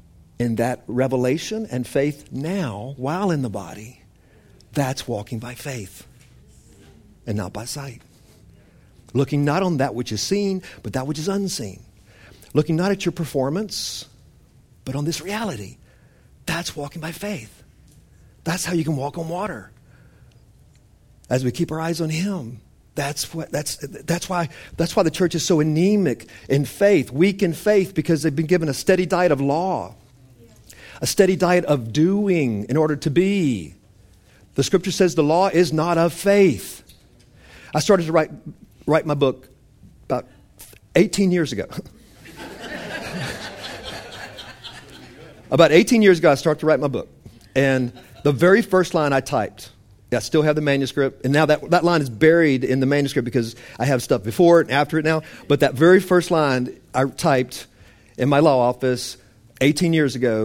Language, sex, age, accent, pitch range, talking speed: English, male, 50-69, American, 120-170 Hz, 165 wpm